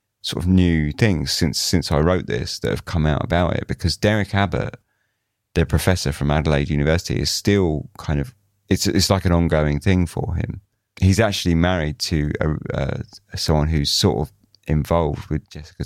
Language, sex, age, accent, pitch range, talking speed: English, male, 30-49, British, 75-100 Hz, 180 wpm